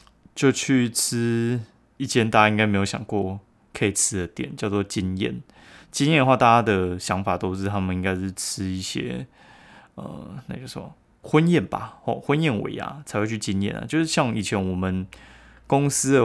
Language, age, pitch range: Chinese, 20-39, 95-115 Hz